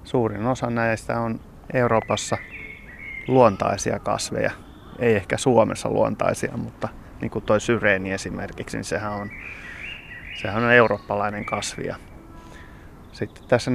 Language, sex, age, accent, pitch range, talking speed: Finnish, male, 30-49, native, 100-120 Hz, 115 wpm